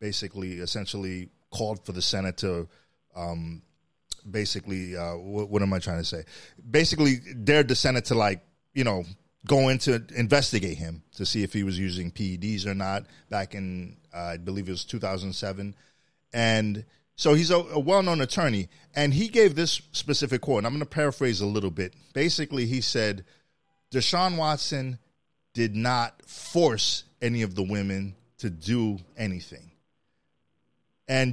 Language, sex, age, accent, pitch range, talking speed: English, male, 30-49, American, 100-145 Hz, 160 wpm